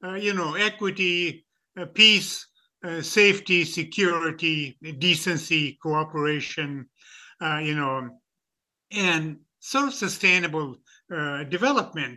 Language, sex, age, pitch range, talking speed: English, male, 60-79, 150-195 Hz, 100 wpm